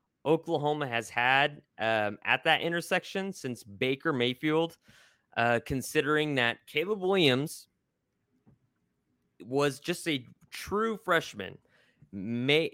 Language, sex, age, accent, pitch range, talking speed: English, male, 20-39, American, 110-145 Hz, 100 wpm